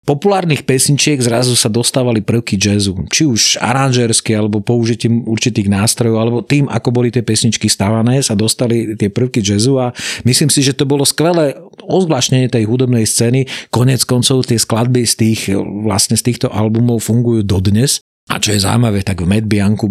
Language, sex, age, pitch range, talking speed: Slovak, male, 40-59, 110-125 Hz, 170 wpm